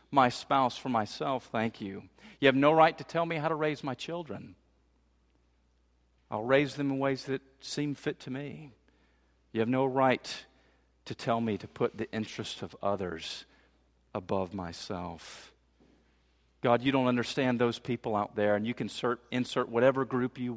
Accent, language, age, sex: American, English, 50-69, male